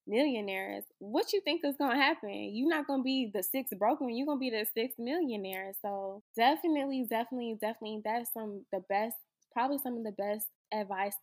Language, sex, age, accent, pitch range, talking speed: English, female, 10-29, American, 195-230 Hz, 180 wpm